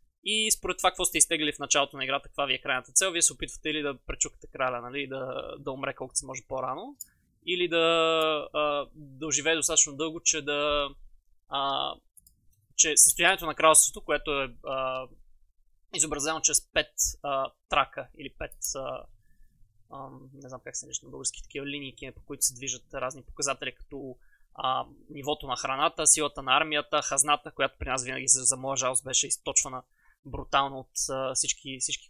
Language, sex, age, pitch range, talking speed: Bulgarian, male, 20-39, 135-165 Hz, 165 wpm